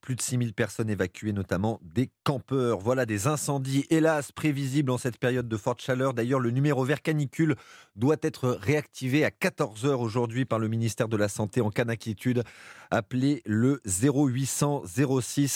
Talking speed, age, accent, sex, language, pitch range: 165 wpm, 30-49, French, male, French, 120-160 Hz